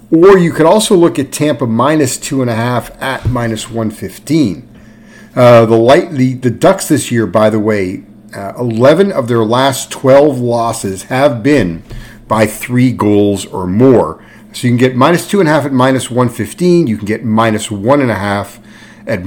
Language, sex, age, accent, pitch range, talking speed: English, male, 50-69, American, 110-140 Hz, 185 wpm